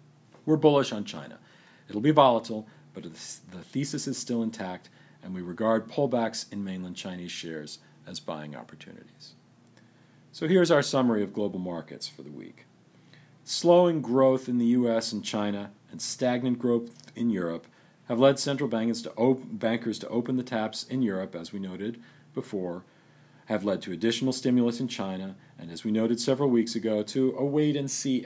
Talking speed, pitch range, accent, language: 165 wpm, 100-135 Hz, American, English